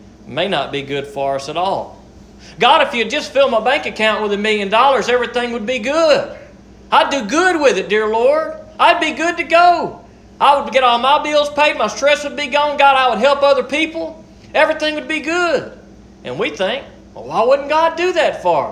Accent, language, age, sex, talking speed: American, English, 40-59, male, 220 wpm